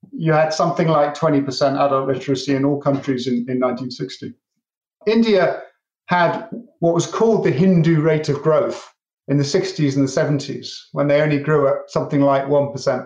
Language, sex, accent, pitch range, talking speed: English, male, British, 140-175 Hz, 170 wpm